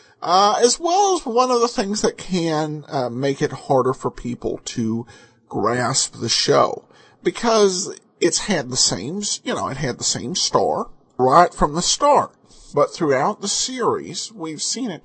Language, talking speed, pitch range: English, 170 wpm, 135-205 Hz